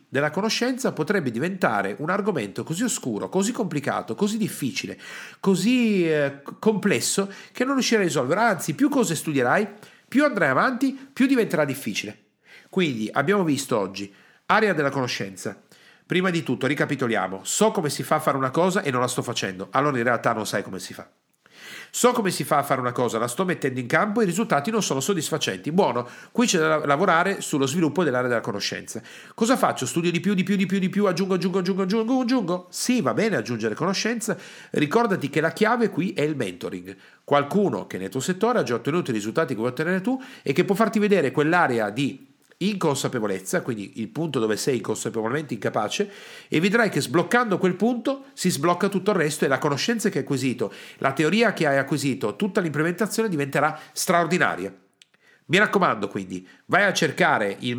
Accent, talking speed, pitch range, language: native, 190 wpm, 135-210 Hz, Italian